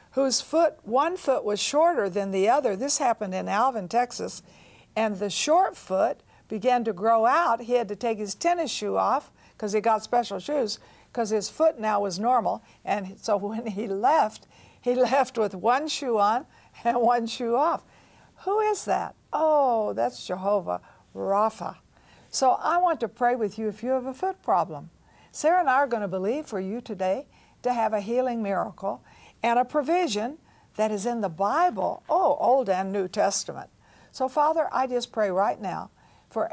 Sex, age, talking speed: female, 60-79, 185 wpm